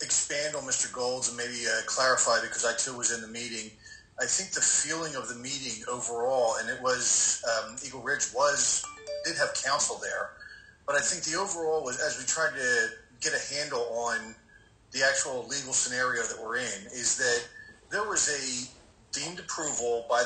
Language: English